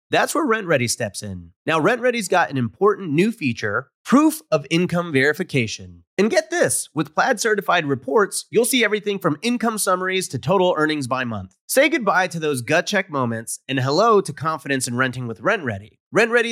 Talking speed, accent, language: 180 wpm, American, English